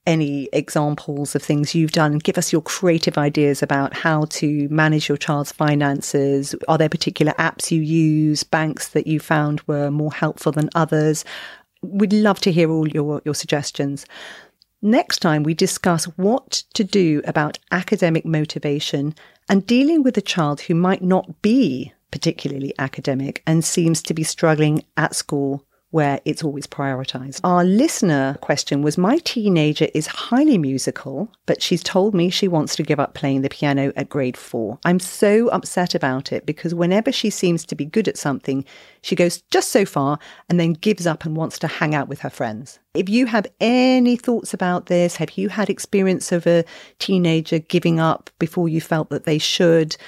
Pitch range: 150-190 Hz